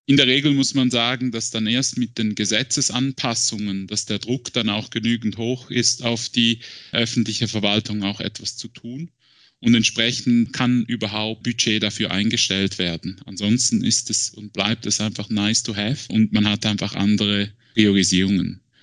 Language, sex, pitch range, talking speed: German, male, 110-125 Hz, 165 wpm